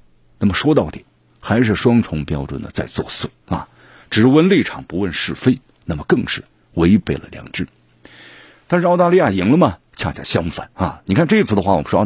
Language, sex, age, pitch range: Chinese, male, 50-69, 80-130 Hz